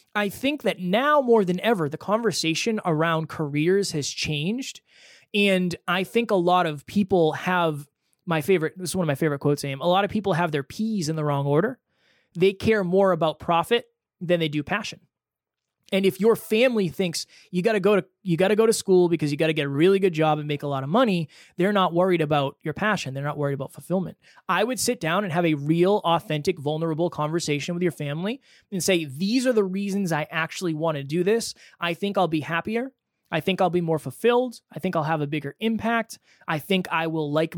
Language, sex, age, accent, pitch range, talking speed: English, male, 20-39, American, 155-205 Hz, 225 wpm